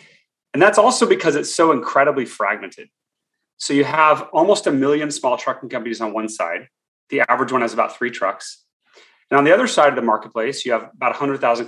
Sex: male